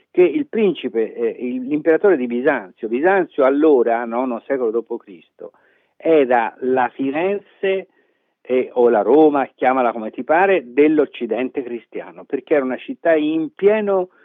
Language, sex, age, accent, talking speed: Italian, male, 50-69, native, 135 wpm